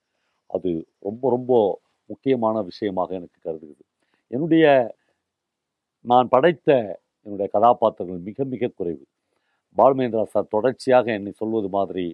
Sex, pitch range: male, 105-165 Hz